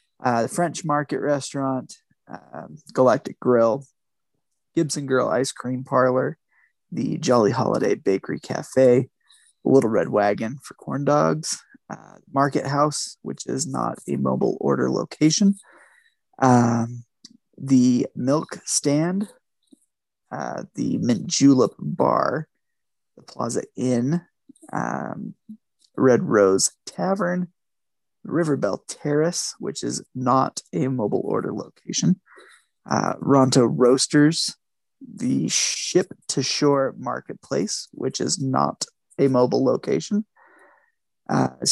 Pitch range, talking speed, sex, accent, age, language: 130-180 Hz, 110 wpm, male, American, 20-39, English